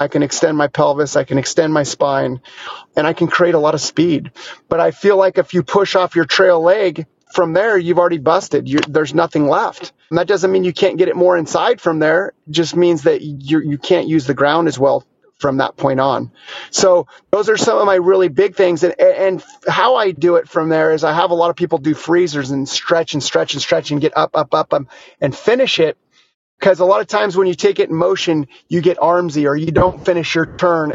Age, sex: 30-49, male